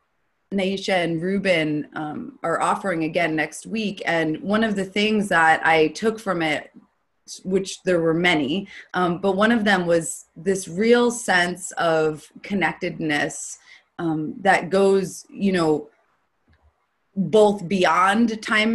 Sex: female